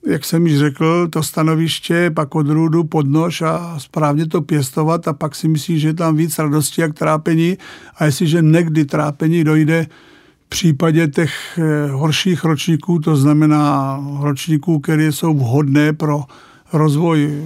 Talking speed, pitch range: 150 wpm, 145-165 Hz